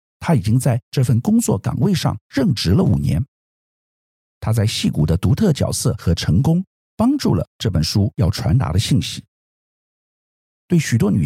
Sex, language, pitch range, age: male, Chinese, 90-145 Hz, 50-69